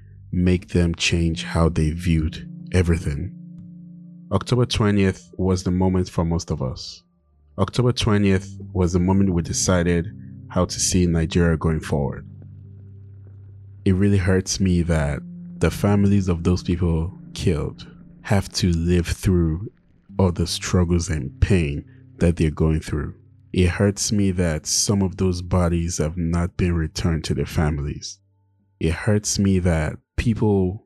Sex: male